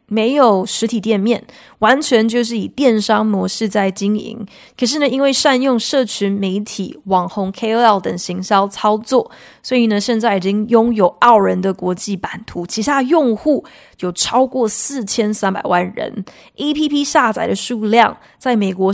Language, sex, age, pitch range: Chinese, female, 20-39, 195-250 Hz